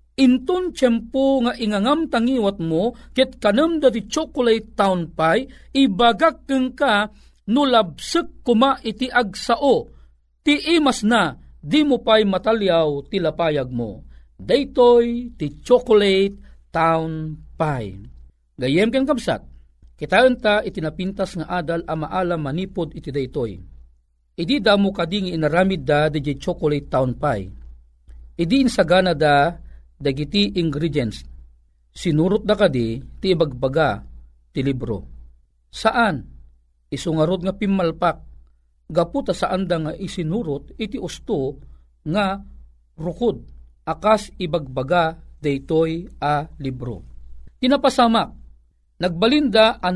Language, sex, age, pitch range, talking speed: Filipino, male, 40-59, 135-225 Hz, 115 wpm